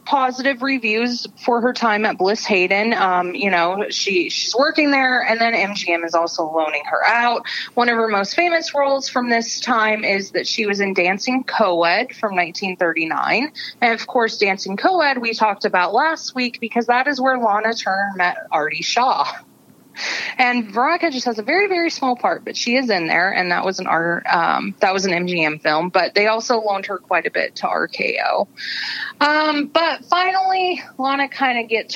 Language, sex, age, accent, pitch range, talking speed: English, female, 20-39, American, 195-270 Hz, 190 wpm